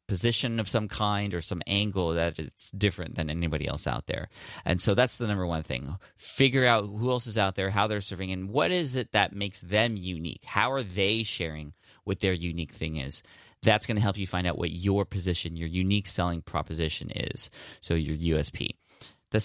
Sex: male